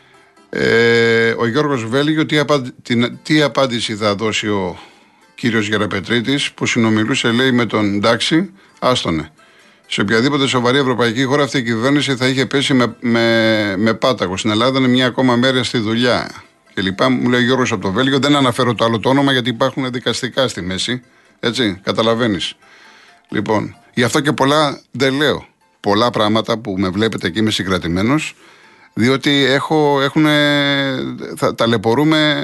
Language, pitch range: Greek, 115-140 Hz